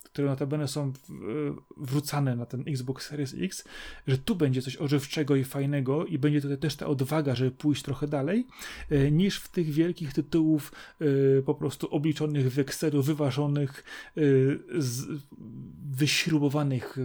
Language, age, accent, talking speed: Polish, 30-49, native, 135 wpm